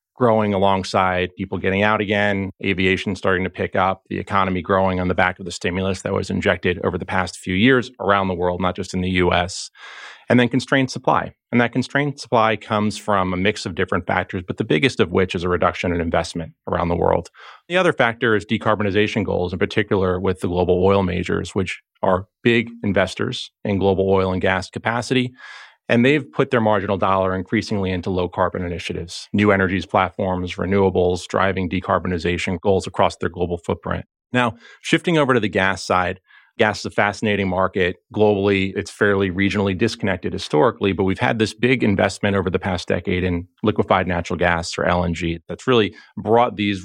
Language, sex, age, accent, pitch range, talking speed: English, male, 30-49, American, 90-105 Hz, 185 wpm